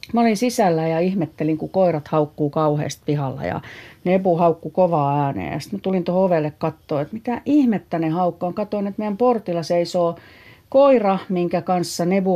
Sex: female